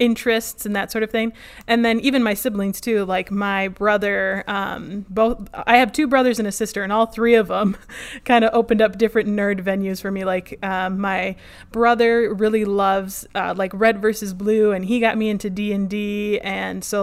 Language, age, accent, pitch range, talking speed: English, 20-39, American, 195-240 Hz, 205 wpm